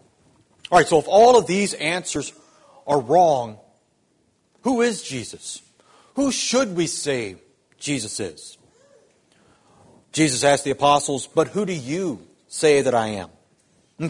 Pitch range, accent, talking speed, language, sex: 150-200 Hz, American, 135 wpm, English, male